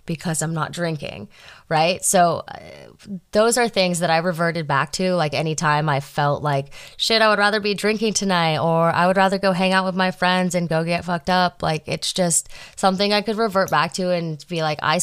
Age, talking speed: 20-39, 220 wpm